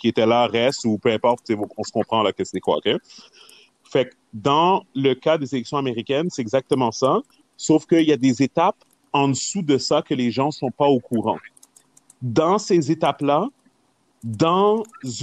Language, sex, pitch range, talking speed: English, male, 140-180 Hz, 190 wpm